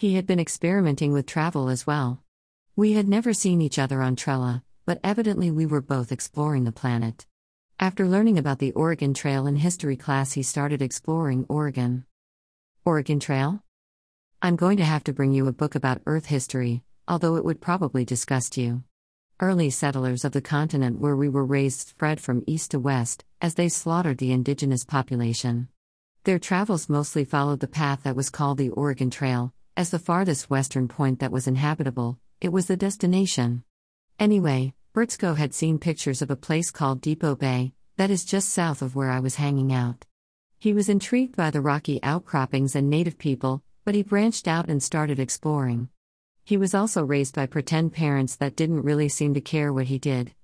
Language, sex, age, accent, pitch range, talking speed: English, female, 50-69, American, 130-165 Hz, 185 wpm